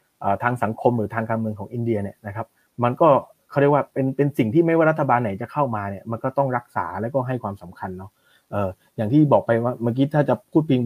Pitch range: 115-145 Hz